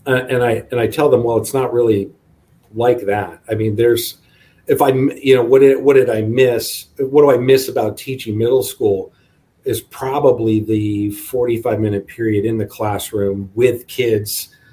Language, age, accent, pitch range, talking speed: English, 40-59, American, 110-135 Hz, 185 wpm